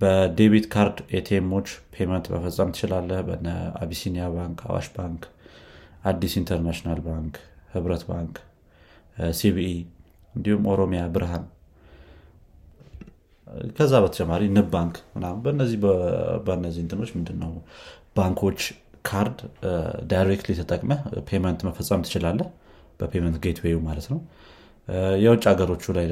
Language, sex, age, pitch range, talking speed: Amharic, male, 30-49, 85-95 Hz, 100 wpm